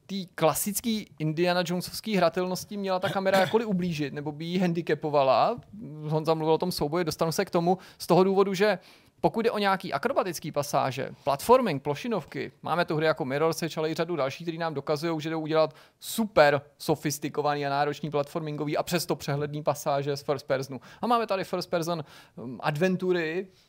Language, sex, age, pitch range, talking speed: Czech, male, 30-49, 140-175 Hz, 170 wpm